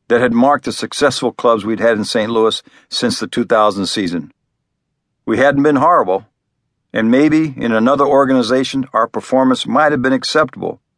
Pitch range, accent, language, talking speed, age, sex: 110-140 Hz, American, English, 165 wpm, 50-69, male